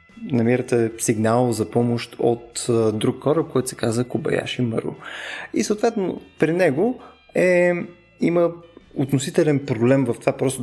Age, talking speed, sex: 20-39, 130 wpm, male